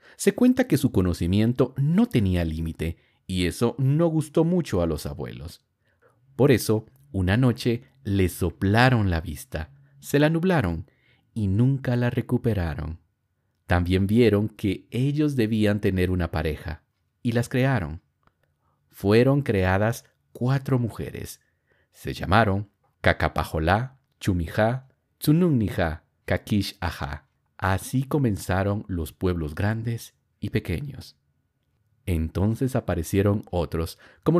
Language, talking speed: Spanish, 110 wpm